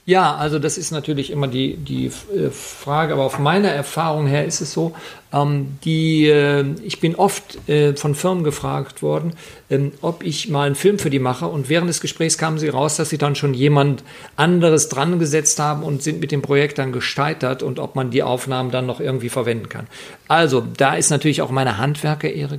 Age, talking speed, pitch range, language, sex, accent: 50-69, 205 wpm, 135-160 Hz, German, male, German